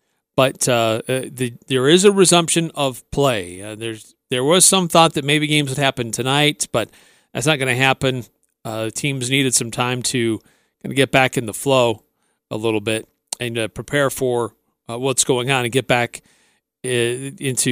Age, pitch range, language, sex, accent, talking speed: 40-59, 120-150 Hz, English, male, American, 190 wpm